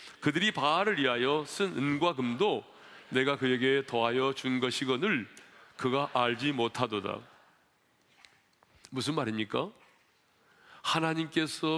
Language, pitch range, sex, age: Korean, 145-225 Hz, male, 40-59